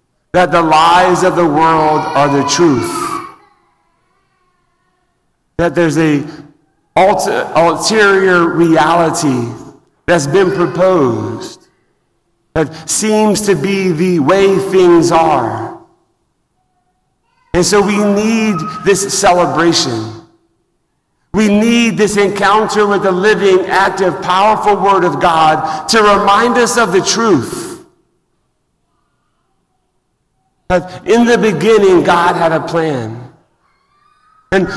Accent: American